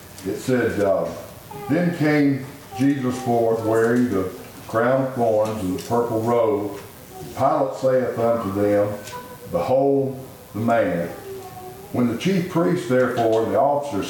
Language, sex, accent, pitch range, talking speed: English, male, American, 110-140 Hz, 130 wpm